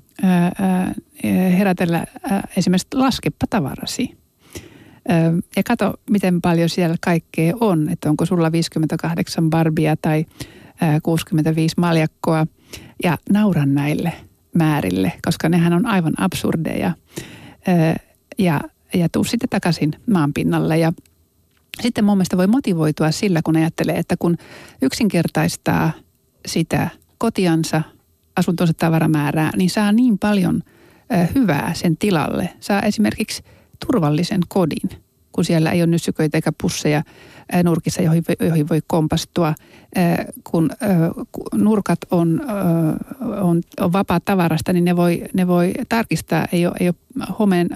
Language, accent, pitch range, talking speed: Finnish, native, 160-195 Hz, 125 wpm